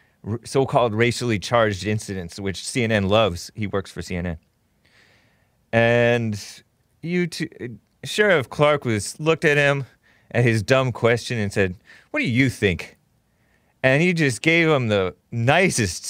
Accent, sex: American, male